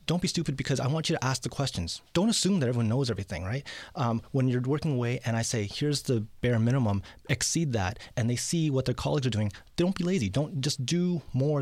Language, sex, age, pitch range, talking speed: English, male, 30-49, 110-140 Hz, 245 wpm